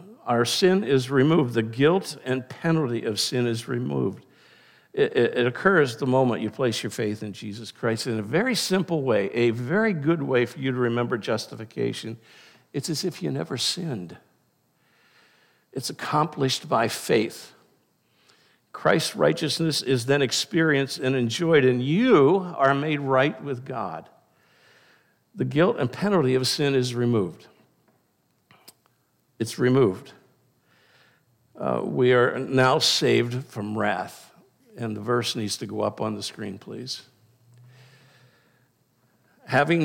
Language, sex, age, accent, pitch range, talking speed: English, male, 60-79, American, 120-150 Hz, 135 wpm